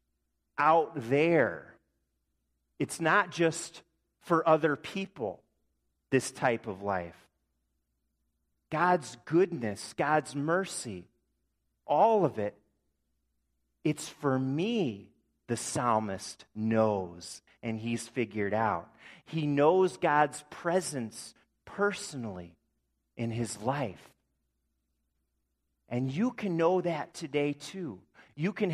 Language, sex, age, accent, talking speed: English, male, 40-59, American, 95 wpm